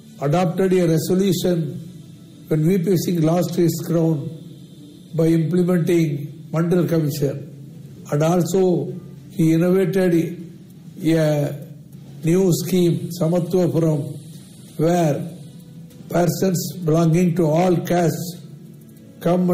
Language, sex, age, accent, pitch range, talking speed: Tamil, male, 60-79, native, 160-175 Hz, 85 wpm